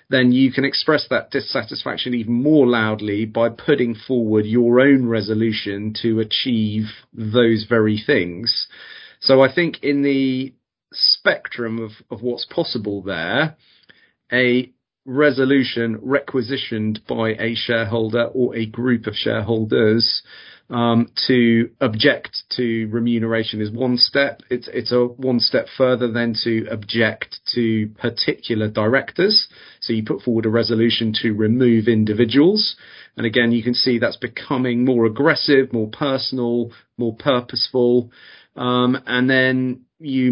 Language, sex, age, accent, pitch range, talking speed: English, male, 40-59, British, 115-125 Hz, 130 wpm